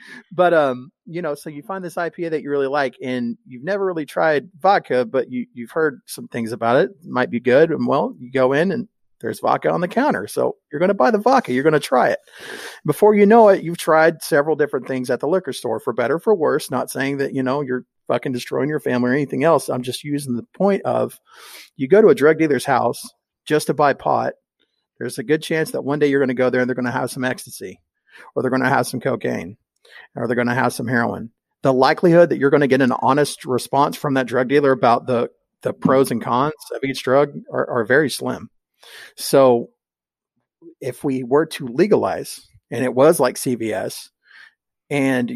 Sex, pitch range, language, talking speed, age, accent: male, 125-165 Hz, English, 230 wpm, 40-59, American